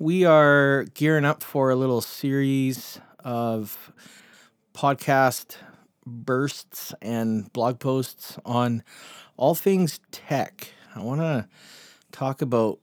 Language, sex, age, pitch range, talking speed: English, male, 30-49, 115-150 Hz, 110 wpm